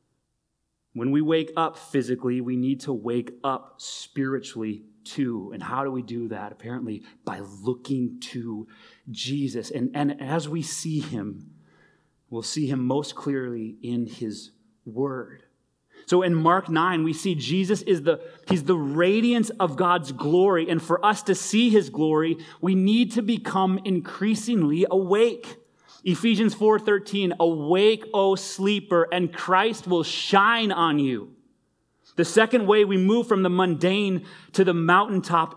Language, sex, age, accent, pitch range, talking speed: English, male, 30-49, American, 120-185 Hz, 145 wpm